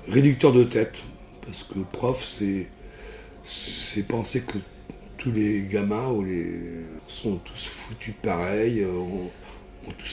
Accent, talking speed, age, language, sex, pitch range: French, 115 wpm, 60-79, French, male, 95-130 Hz